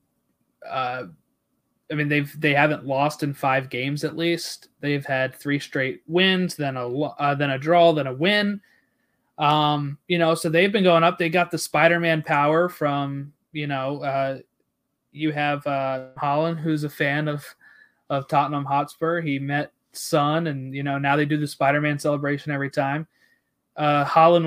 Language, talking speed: English, 170 wpm